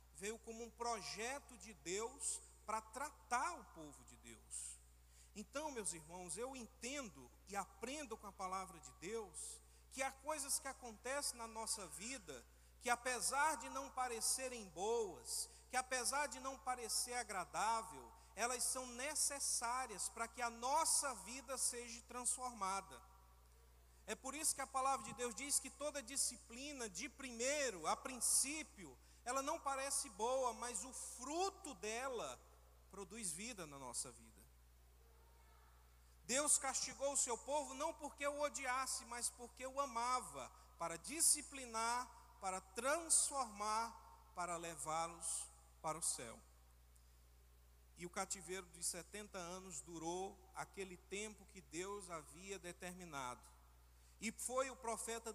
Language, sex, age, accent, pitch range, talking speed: Portuguese, male, 50-69, Brazilian, 180-265 Hz, 130 wpm